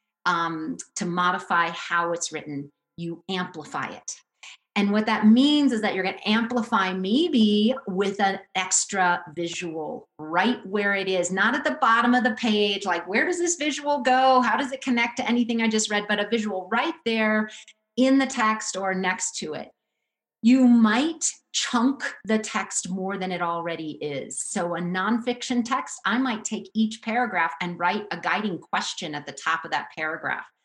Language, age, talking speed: English, 30-49, 180 wpm